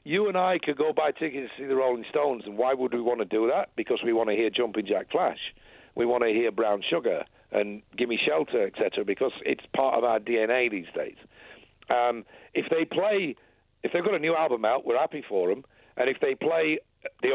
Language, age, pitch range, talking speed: English, 50-69, 120-165 Hz, 230 wpm